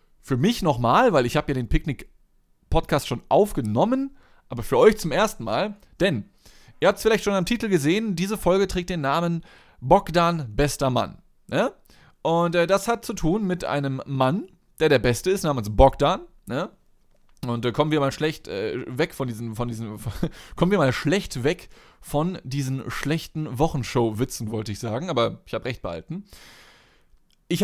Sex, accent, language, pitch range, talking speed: male, German, German, 130-185 Hz, 175 wpm